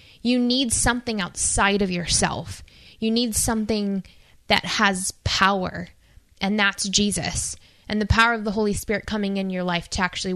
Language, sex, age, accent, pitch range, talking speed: English, female, 10-29, American, 195-245 Hz, 160 wpm